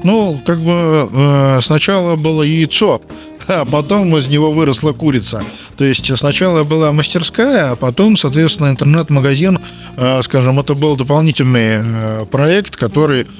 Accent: native